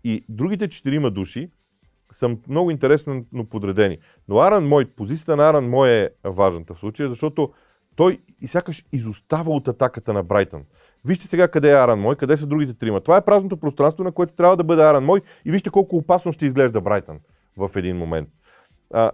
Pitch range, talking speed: 120-175 Hz, 190 wpm